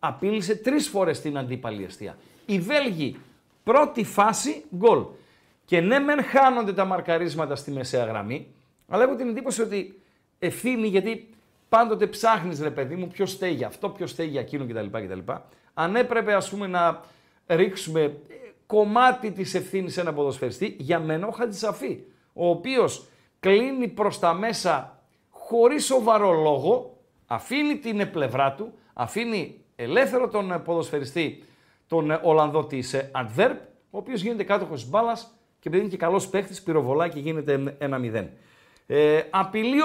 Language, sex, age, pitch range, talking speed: Greek, male, 50-69, 155-230 Hz, 140 wpm